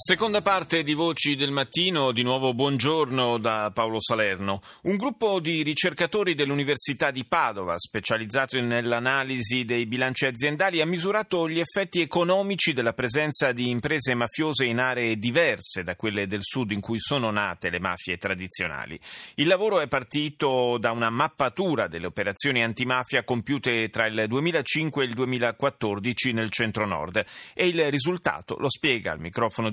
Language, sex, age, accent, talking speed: Italian, male, 30-49, native, 150 wpm